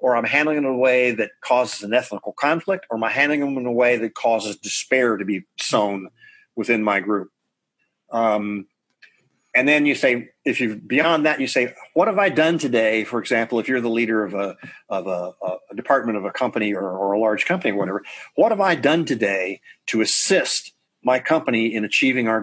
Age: 40-59